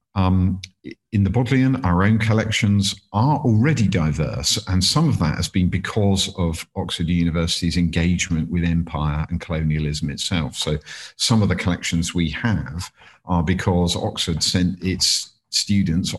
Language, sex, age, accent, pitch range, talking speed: English, male, 50-69, British, 85-100 Hz, 145 wpm